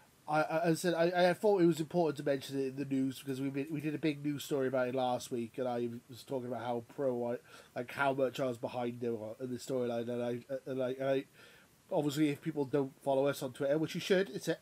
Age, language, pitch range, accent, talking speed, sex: 20-39, English, 125-150 Hz, British, 265 wpm, male